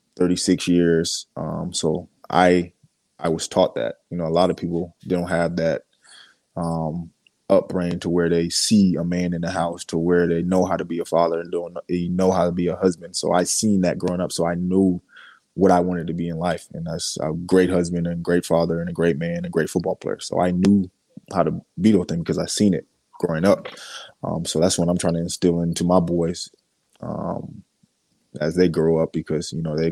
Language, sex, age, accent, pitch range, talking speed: English, male, 20-39, American, 85-90 Hz, 225 wpm